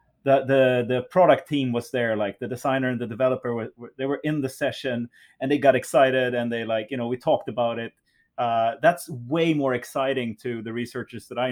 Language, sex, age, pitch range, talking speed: English, male, 30-49, 115-135 Hz, 225 wpm